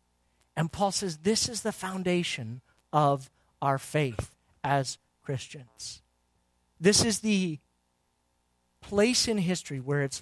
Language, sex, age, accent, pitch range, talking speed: English, male, 40-59, American, 145-210 Hz, 115 wpm